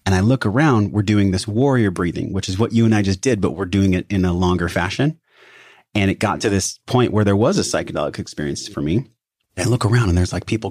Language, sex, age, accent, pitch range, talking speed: English, male, 30-49, American, 95-115 Hz, 265 wpm